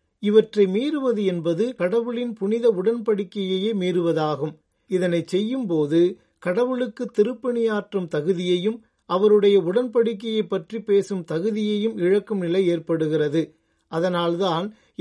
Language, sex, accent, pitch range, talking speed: Tamil, male, native, 175-225 Hz, 85 wpm